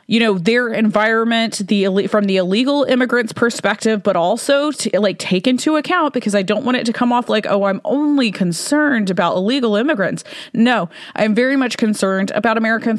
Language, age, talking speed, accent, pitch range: English, 20-39, 185 wpm, American, 190-250 Hz